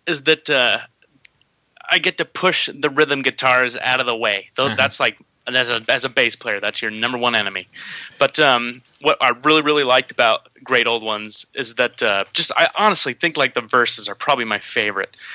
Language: English